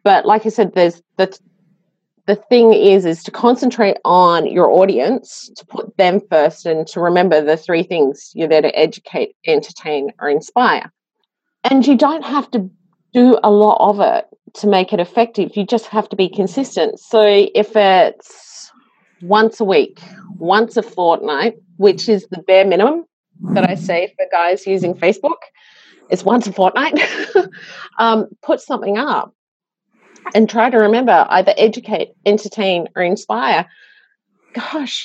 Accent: Australian